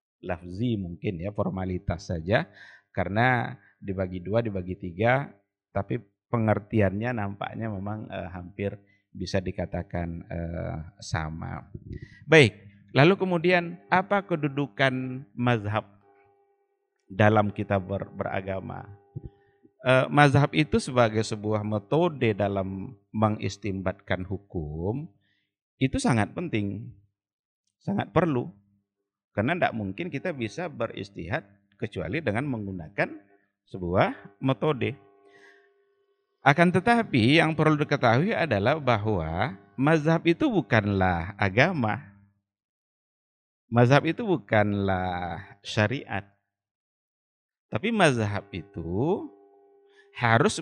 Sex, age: male, 50-69